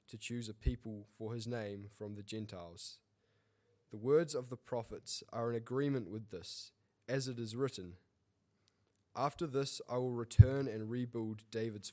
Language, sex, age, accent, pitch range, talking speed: English, male, 10-29, Australian, 105-130 Hz, 160 wpm